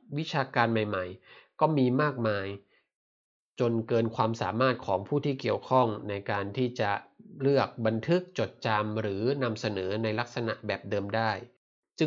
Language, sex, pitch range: Thai, male, 110-130 Hz